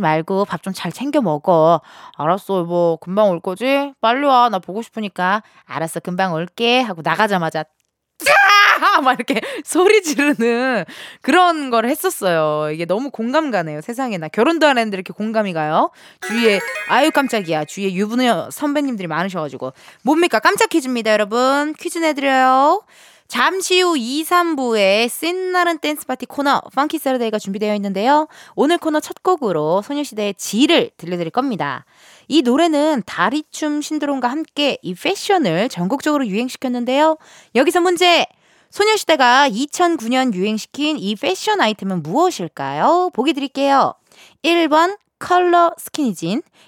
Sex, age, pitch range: female, 20-39, 200-310 Hz